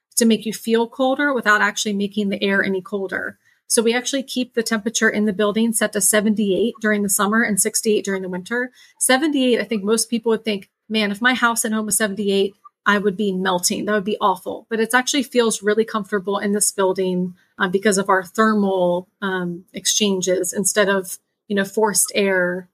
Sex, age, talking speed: female, 30-49, 205 wpm